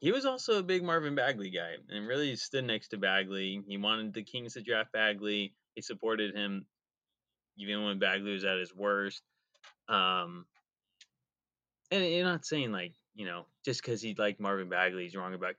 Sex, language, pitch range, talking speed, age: male, English, 95-125 Hz, 185 wpm, 20-39